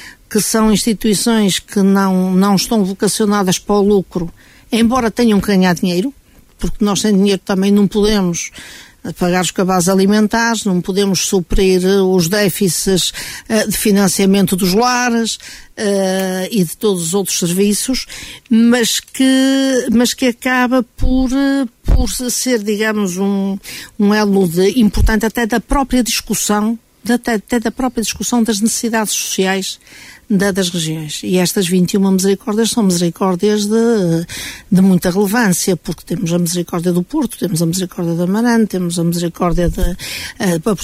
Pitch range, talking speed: 180-225 Hz, 145 wpm